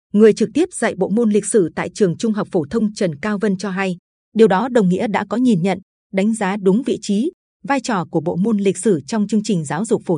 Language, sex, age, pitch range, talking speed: Vietnamese, female, 20-39, 180-230 Hz, 265 wpm